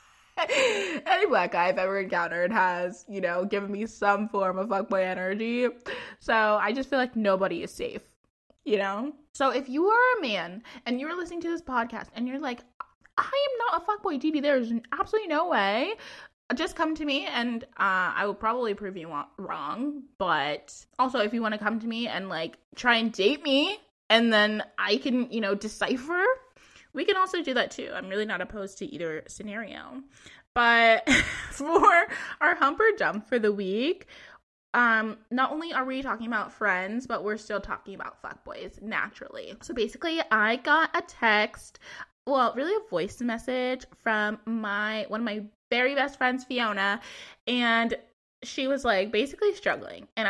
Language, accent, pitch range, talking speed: English, American, 210-285 Hz, 180 wpm